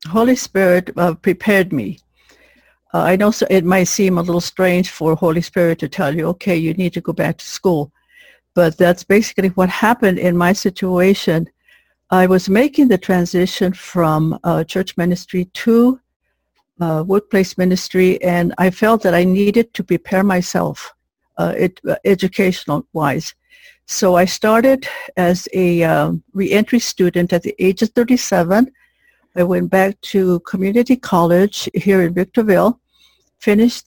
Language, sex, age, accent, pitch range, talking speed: English, female, 60-79, American, 175-210 Hz, 150 wpm